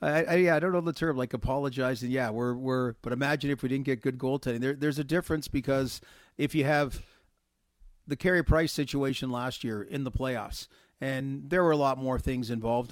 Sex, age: male, 40-59